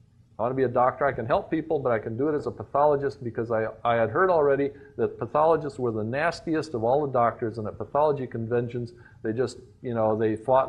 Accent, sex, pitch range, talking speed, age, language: American, male, 115-145 Hz, 240 wpm, 50-69, English